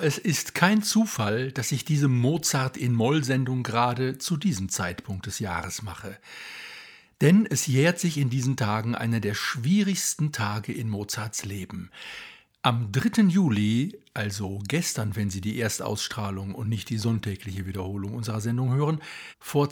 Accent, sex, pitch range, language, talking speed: German, male, 110-150 Hz, German, 145 wpm